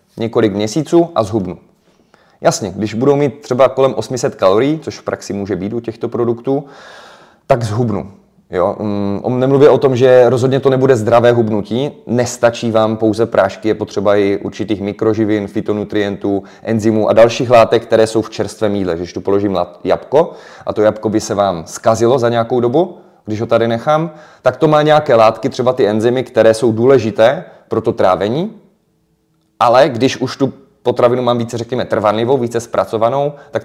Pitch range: 105-130 Hz